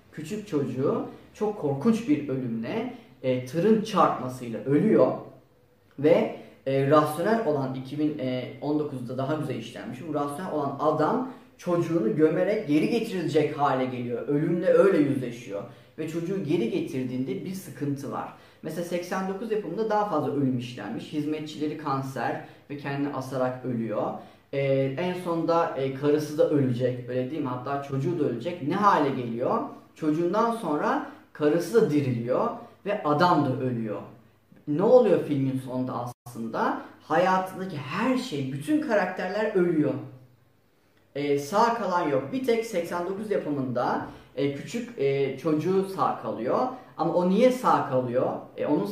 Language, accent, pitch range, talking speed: Turkish, native, 130-175 Hz, 135 wpm